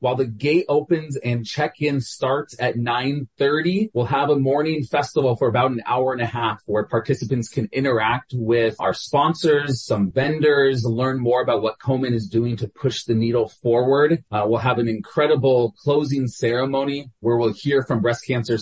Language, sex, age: English, male, 30-49